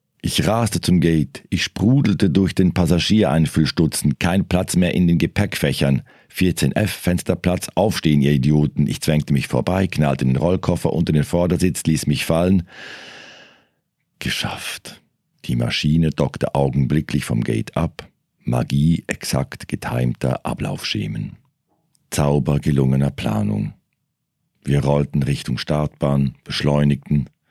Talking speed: 120 wpm